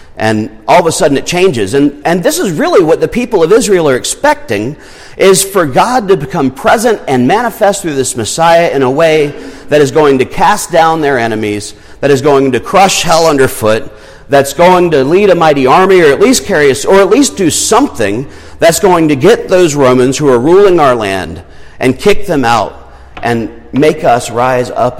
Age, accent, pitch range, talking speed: 40-59, American, 105-160 Hz, 205 wpm